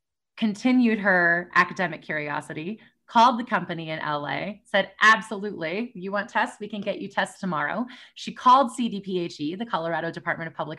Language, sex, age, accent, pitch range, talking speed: English, female, 20-39, American, 185-230 Hz, 155 wpm